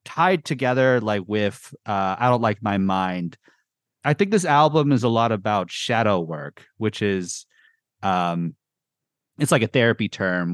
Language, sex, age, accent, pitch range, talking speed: English, male, 30-49, American, 100-135 Hz, 160 wpm